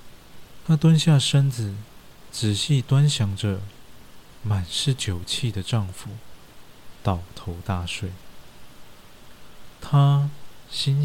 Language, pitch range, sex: Chinese, 95-135 Hz, male